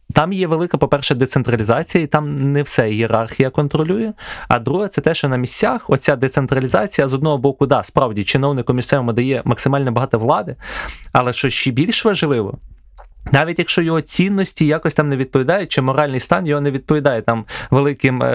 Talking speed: 170 wpm